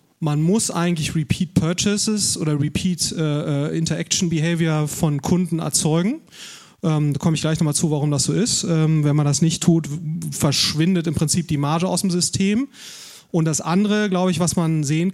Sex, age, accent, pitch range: male, 30-49, German, 150-180 Hz